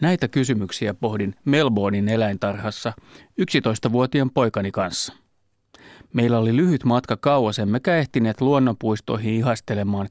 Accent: native